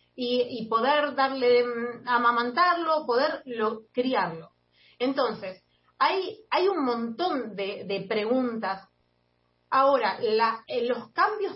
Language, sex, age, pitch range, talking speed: Spanish, female, 30-49, 215-280 Hz, 105 wpm